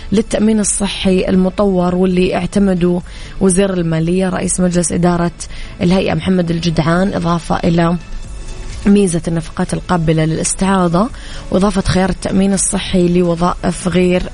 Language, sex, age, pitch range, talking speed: Arabic, female, 20-39, 170-190 Hz, 105 wpm